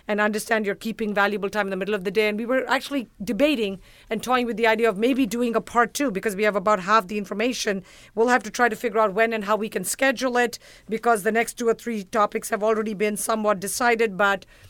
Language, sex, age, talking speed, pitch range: English, female, 50-69, 255 wpm, 200-235 Hz